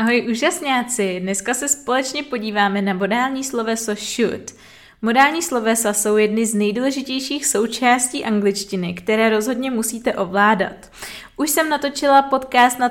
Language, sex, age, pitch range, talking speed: Czech, female, 20-39, 210-250 Hz, 125 wpm